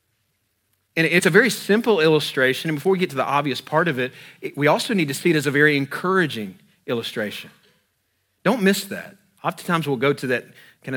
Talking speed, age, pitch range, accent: 200 wpm, 40-59, 130-185 Hz, American